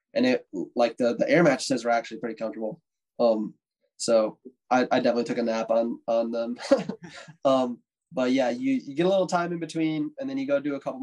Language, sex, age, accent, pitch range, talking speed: English, male, 20-39, American, 120-165 Hz, 220 wpm